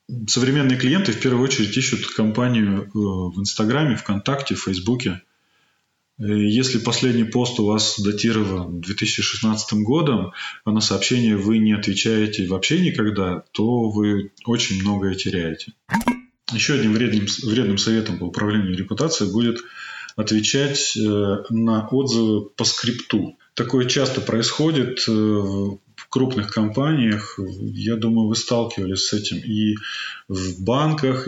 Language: Russian